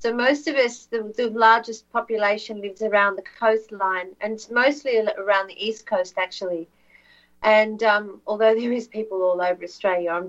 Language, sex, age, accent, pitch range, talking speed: English, female, 40-59, Australian, 210-255 Hz, 170 wpm